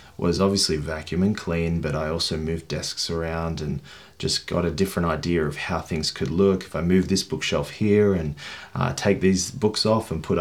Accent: Australian